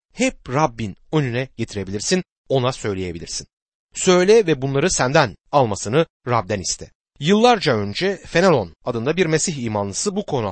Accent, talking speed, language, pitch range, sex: native, 125 wpm, Turkish, 115-180 Hz, male